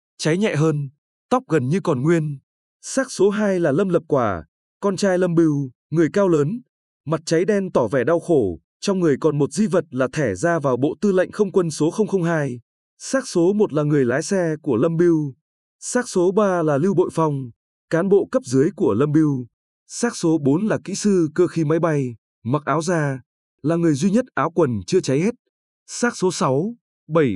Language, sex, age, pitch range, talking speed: Vietnamese, male, 20-39, 145-195 Hz, 210 wpm